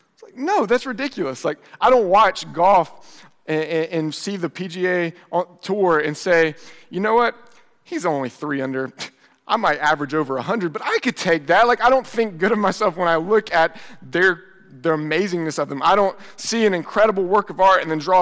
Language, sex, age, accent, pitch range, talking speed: English, male, 30-49, American, 155-190 Hz, 200 wpm